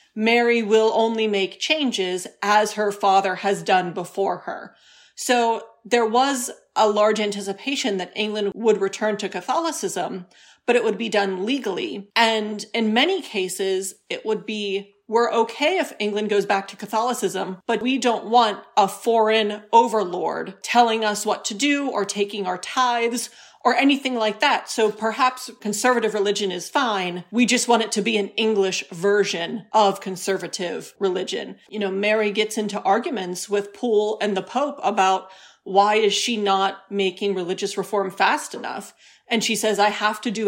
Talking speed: 165 wpm